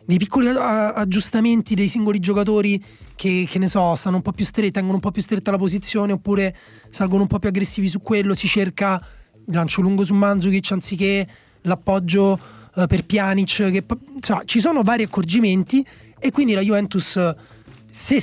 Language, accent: Italian, native